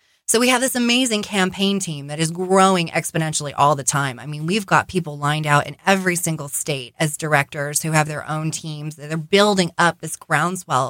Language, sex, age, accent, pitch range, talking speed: English, female, 20-39, American, 150-195 Hz, 210 wpm